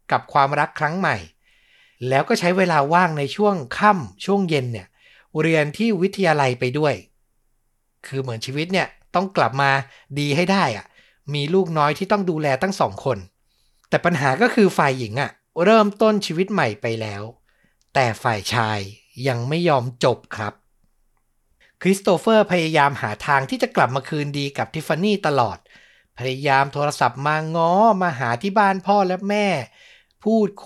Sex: male